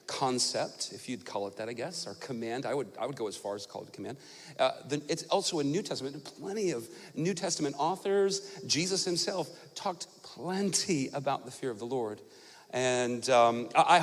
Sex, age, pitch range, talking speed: male, 40-59, 130-175 Hz, 200 wpm